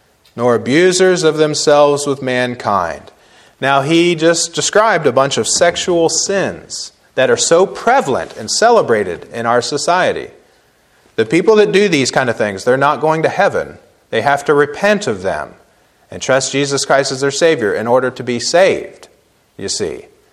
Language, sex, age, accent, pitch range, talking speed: English, male, 30-49, American, 150-210 Hz, 170 wpm